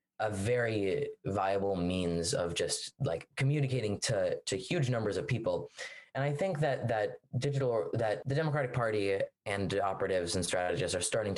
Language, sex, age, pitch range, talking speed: English, male, 20-39, 110-145 Hz, 160 wpm